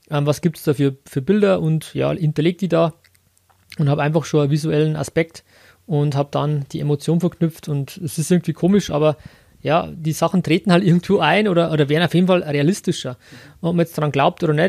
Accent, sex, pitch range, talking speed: German, male, 145-175 Hz, 215 wpm